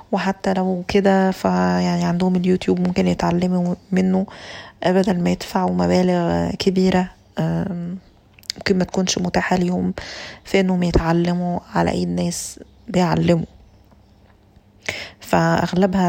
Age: 20-39